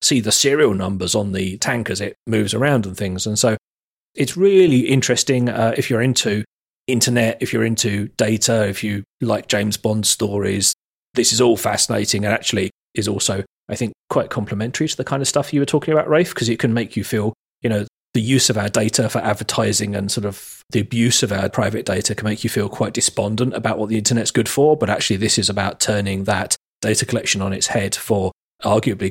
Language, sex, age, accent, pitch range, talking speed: English, male, 30-49, British, 100-115 Hz, 215 wpm